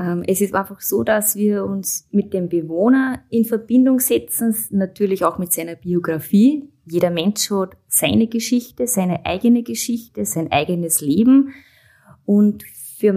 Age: 20-39